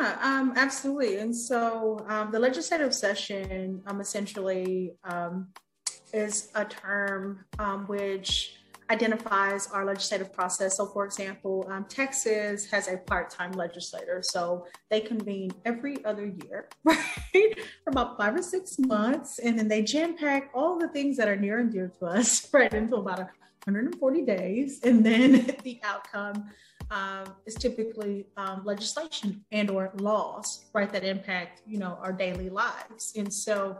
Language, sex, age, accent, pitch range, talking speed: English, female, 30-49, American, 190-225 Hz, 150 wpm